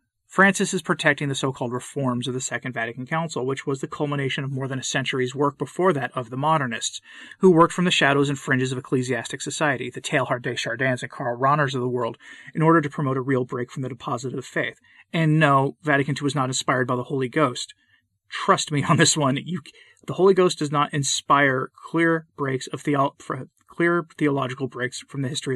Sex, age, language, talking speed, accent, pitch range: male, 30-49, English, 215 wpm, American, 130-155 Hz